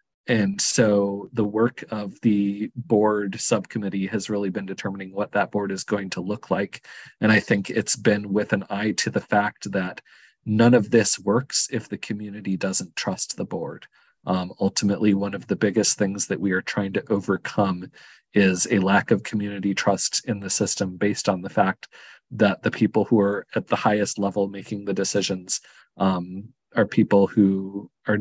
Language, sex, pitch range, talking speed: English, male, 100-110 Hz, 180 wpm